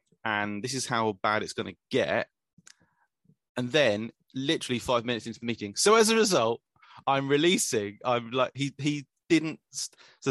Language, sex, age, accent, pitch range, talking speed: English, male, 30-49, British, 110-140 Hz, 170 wpm